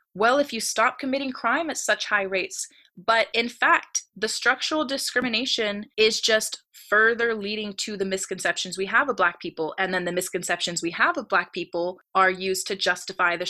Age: 20-39